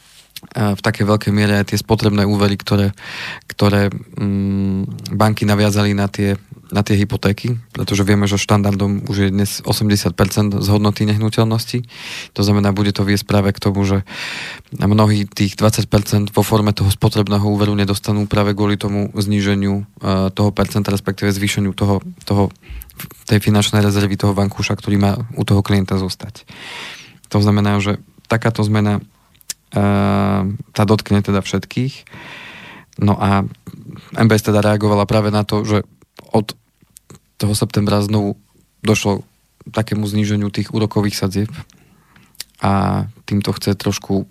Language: Slovak